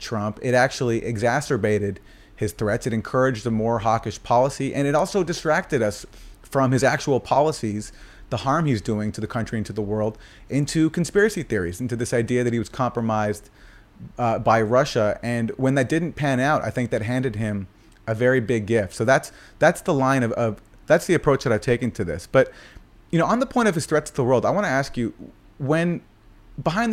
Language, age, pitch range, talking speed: English, 30-49, 110-135 Hz, 210 wpm